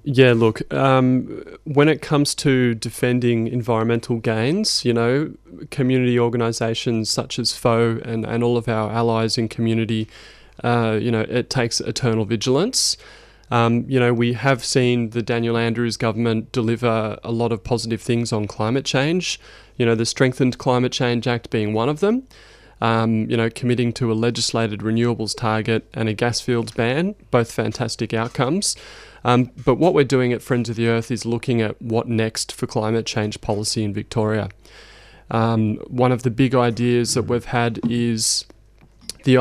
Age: 20-39